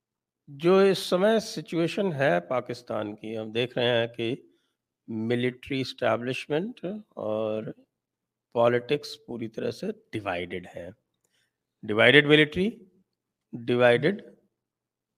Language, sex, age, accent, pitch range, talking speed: English, male, 50-69, Indian, 120-165 Hz, 95 wpm